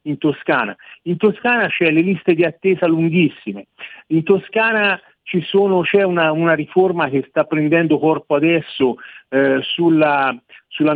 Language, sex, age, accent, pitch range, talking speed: Italian, male, 50-69, native, 140-180 Hz, 140 wpm